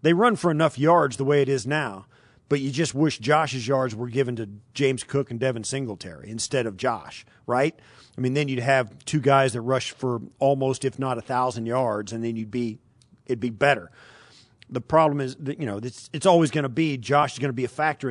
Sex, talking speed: male, 230 wpm